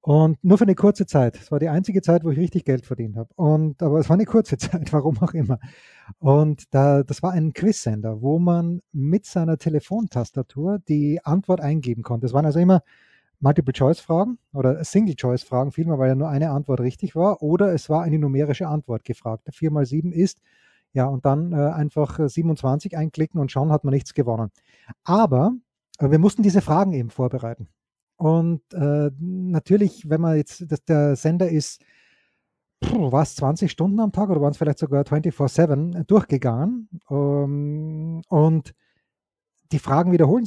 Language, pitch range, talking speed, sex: German, 140-180 Hz, 170 wpm, male